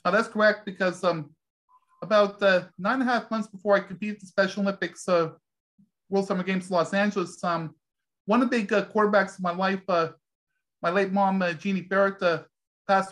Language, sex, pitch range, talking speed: English, male, 175-210 Hz, 205 wpm